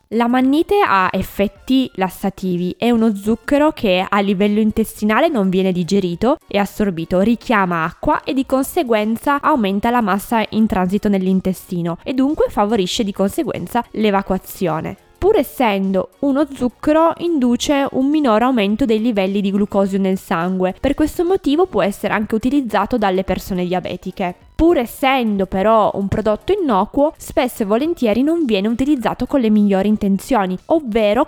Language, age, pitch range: Italian, 20-39, 195-260 Hz